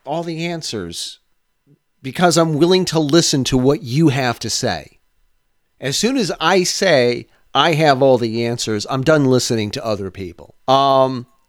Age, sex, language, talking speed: 40-59, male, English, 160 wpm